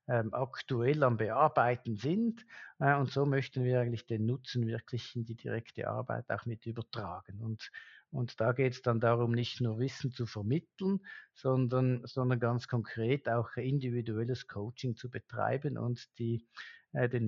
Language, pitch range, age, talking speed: German, 115-130 Hz, 50-69, 145 wpm